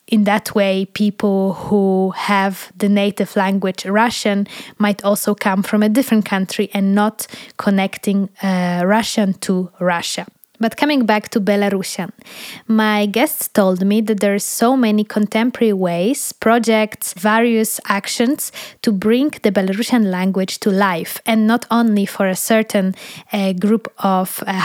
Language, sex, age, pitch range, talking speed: English, female, 20-39, 195-230 Hz, 145 wpm